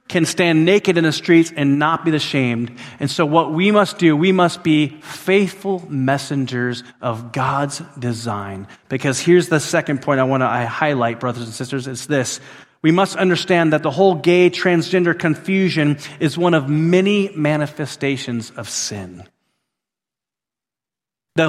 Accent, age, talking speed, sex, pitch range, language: American, 30-49, 155 wpm, male, 130-180 Hz, English